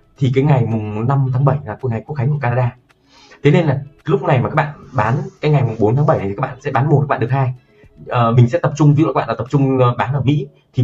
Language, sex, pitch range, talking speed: Vietnamese, male, 120-145 Hz, 300 wpm